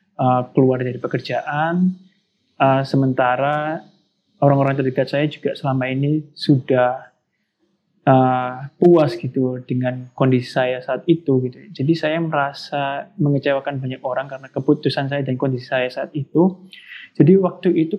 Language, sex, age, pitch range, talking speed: Indonesian, male, 20-39, 130-160 Hz, 130 wpm